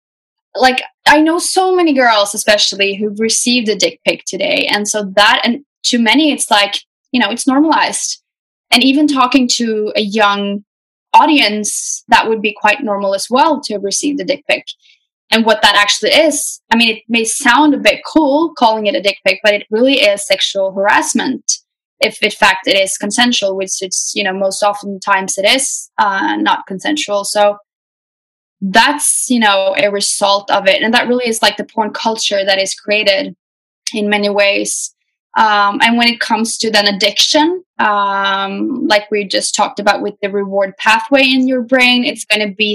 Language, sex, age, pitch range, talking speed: Swedish, female, 10-29, 205-265 Hz, 185 wpm